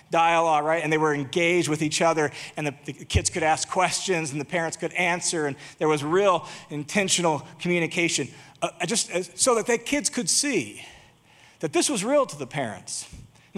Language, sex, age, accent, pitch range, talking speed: English, male, 40-59, American, 140-200 Hz, 195 wpm